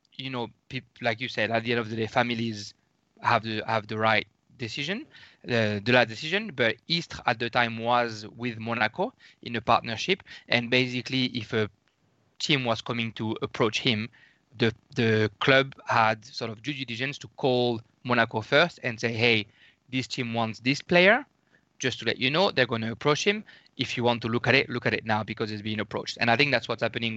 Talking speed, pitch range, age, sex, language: 205 wpm, 115-130 Hz, 20-39, male, English